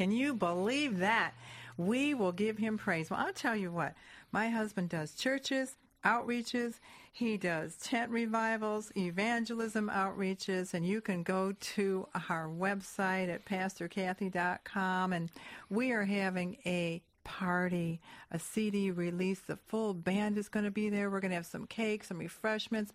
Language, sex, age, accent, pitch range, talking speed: English, female, 50-69, American, 180-225 Hz, 155 wpm